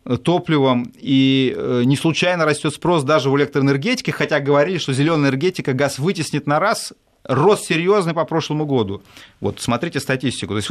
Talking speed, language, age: 155 wpm, Russian, 30-49